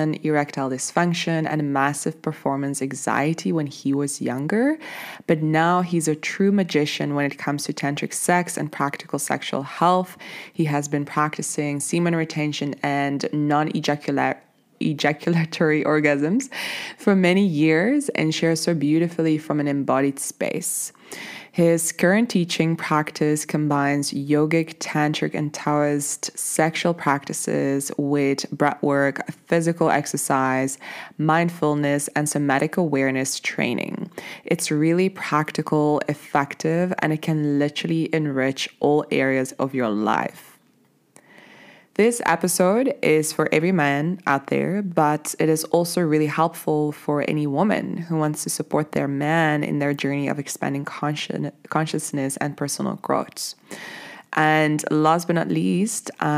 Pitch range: 145-165 Hz